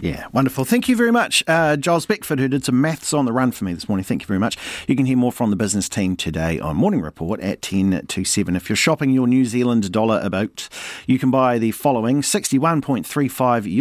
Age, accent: 40-59, Australian